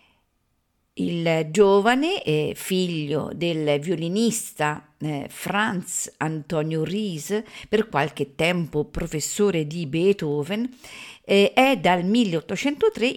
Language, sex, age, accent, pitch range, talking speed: Italian, female, 50-69, native, 150-215 Hz, 80 wpm